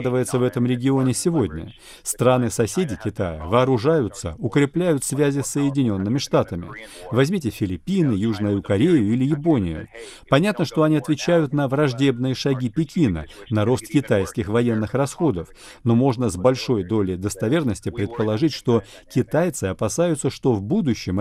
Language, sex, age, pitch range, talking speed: Russian, male, 40-59, 105-150 Hz, 125 wpm